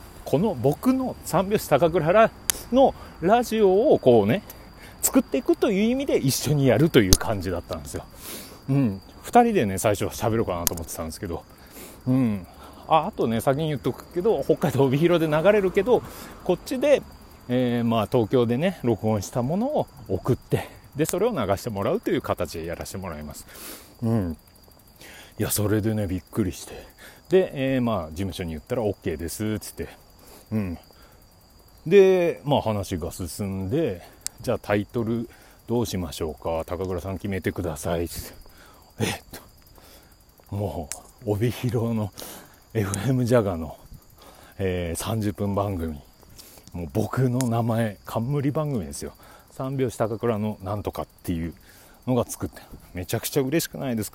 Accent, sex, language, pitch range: native, male, Japanese, 95-135 Hz